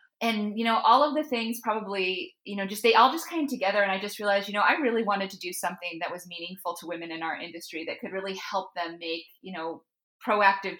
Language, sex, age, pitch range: English, female, 30-49, 170-205 Hz